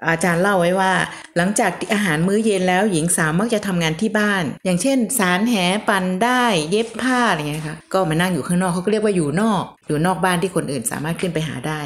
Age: 30-49